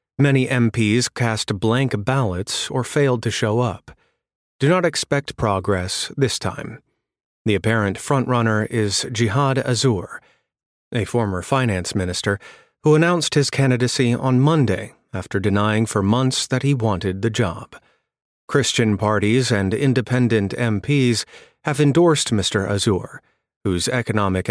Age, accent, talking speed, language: 30-49, American, 125 wpm, English